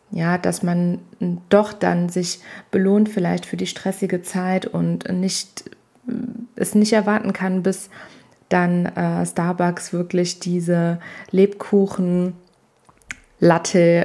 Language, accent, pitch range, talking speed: German, German, 175-210 Hz, 105 wpm